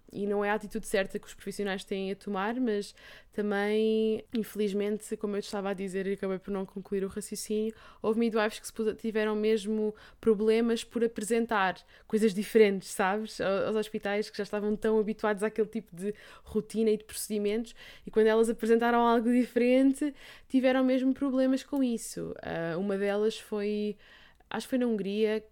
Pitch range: 195-225 Hz